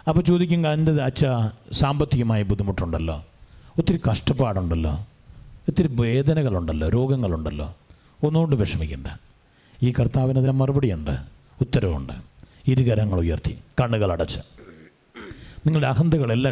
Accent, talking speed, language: Indian, 125 wpm, English